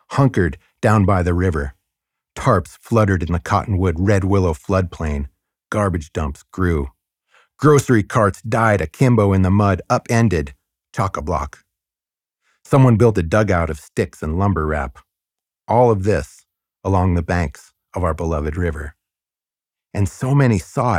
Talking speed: 135 wpm